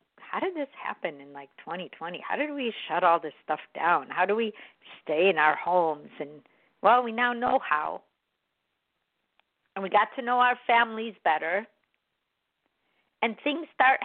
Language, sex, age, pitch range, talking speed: English, female, 50-69, 175-245 Hz, 165 wpm